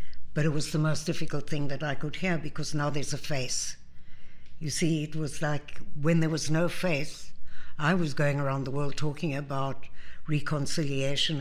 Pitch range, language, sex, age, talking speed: 135-155 Hz, English, female, 60-79, 185 wpm